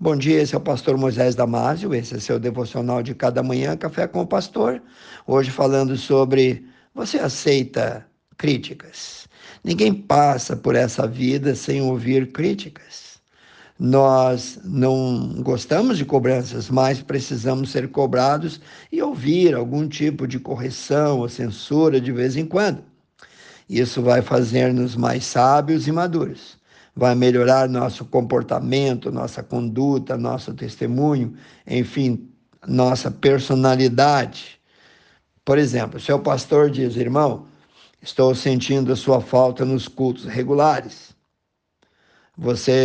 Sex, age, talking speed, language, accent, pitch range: male, 50-69, 125 wpm, Portuguese, Brazilian, 125-145 Hz